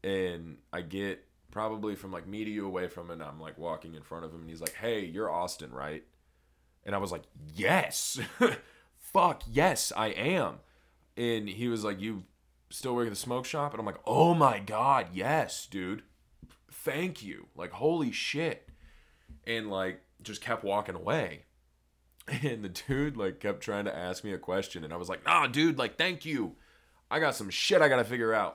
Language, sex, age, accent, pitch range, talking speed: English, male, 20-39, American, 80-110 Hz, 195 wpm